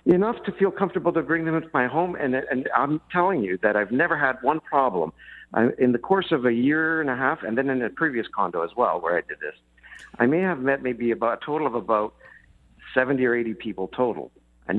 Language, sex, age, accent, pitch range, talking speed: English, male, 60-79, American, 120-160 Hz, 240 wpm